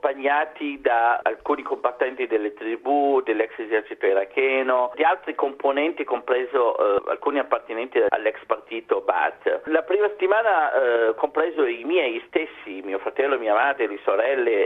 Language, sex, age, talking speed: Italian, male, 50-69, 130 wpm